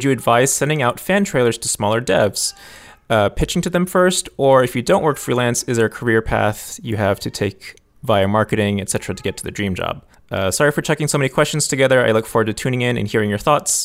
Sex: male